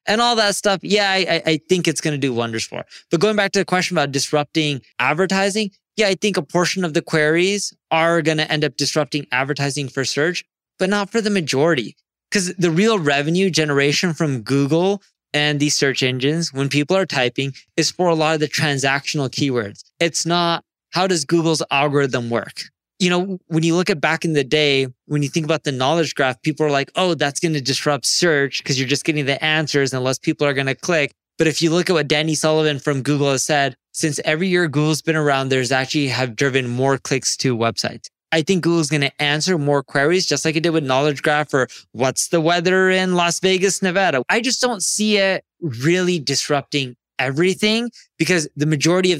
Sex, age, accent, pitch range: male, 20-39, American, 140-175 Hz